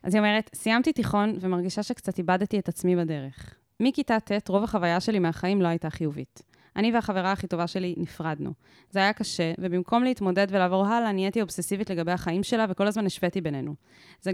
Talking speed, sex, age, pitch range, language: 180 wpm, female, 20-39, 170-205 Hz, Hebrew